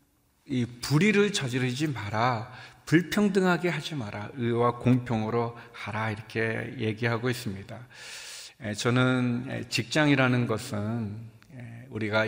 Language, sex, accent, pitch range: Korean, male, native, 115-150 Hz